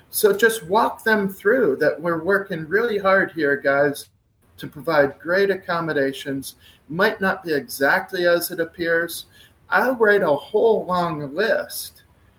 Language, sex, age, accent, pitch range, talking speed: English, male, 50-69, American, 135-180 Hz, 140 wpm